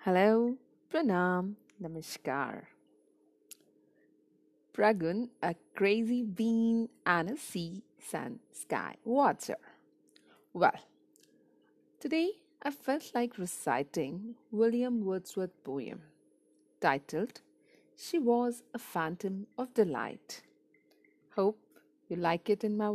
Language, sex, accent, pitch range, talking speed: Hindi, female, native, 185-245 Hz, 90 wpm